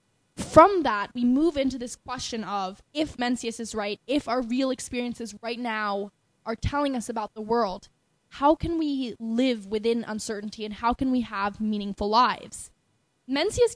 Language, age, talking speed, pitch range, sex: English, 10-29, 165 wpm, 215-260 Hz, female